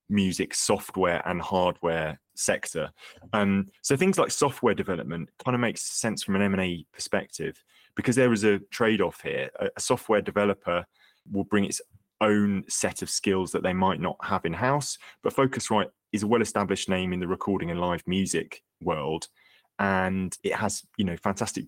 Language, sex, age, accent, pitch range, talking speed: English, male, 20-39, British, 90-105 Hz, 170 wpm